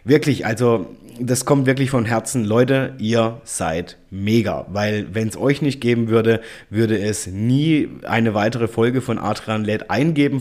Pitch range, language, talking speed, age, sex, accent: 105-125 Hz, German, 160 wpm, 30-49, male, German